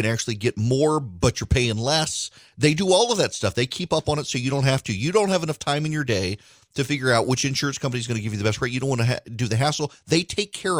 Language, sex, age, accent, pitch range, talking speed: English, male, 40-59, American, 105-140 Hz, 305 wpm